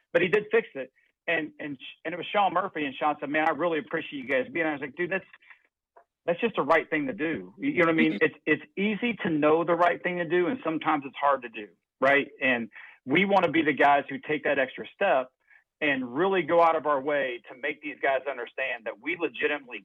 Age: 40-59